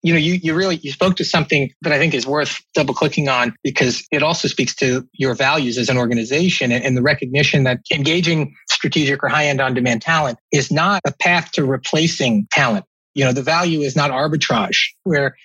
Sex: male